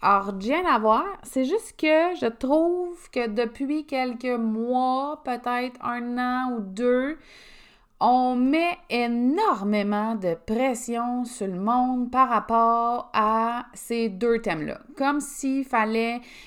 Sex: female